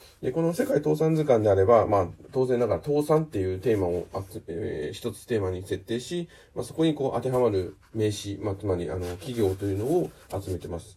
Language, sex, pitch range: Japanese, male, 95-130 Hz